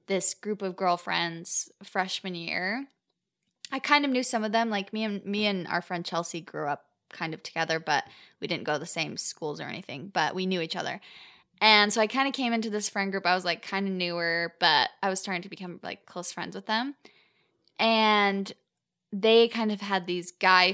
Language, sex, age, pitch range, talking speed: English, female, 10-29, 180-220 Hz, 215 wpm